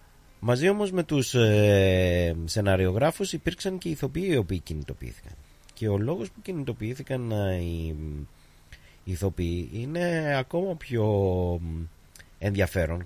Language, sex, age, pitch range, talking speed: Greek, male, 30-49, 85-125 Hz, 110 wpm